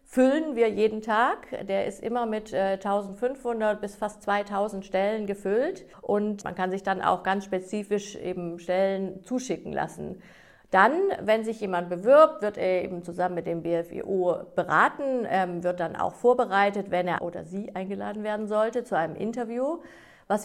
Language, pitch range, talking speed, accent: German, 180-220 Hz, 165 wpm, German